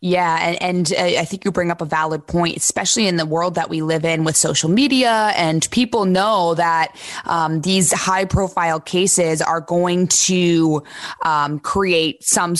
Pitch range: 160-185 Hz